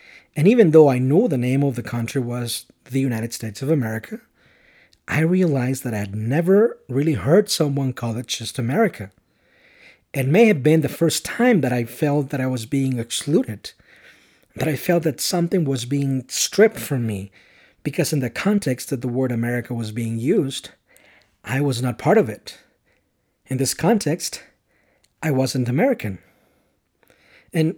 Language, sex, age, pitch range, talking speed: English, male, 40-59, 125-160 Hz, 170 wpm